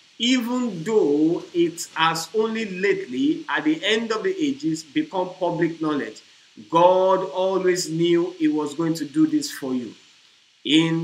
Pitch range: 155-215 Hz